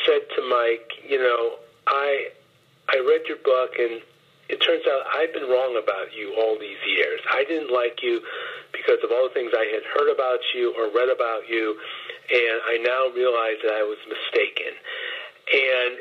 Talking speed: 185 wpm